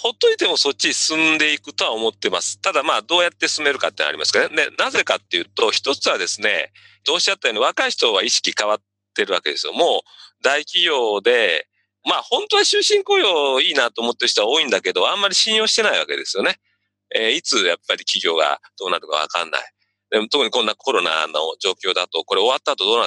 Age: 40-59